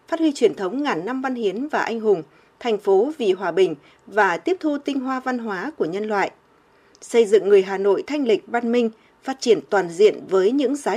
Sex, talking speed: female, 230 wpm